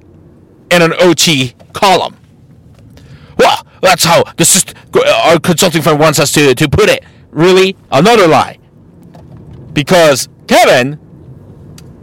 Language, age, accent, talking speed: English, 40-59, American, 105 wpm